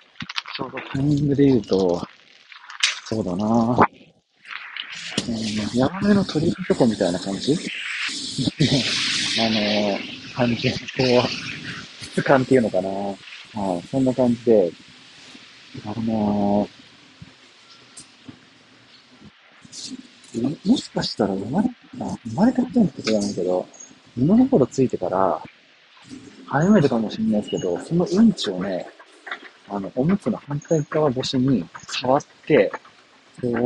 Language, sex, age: Japanese, male, 40-59